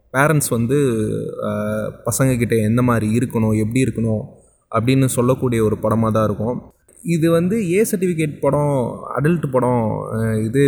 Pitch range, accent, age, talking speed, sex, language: 115-145 Hz, native, 20-39, 130 wpm, male, Tamil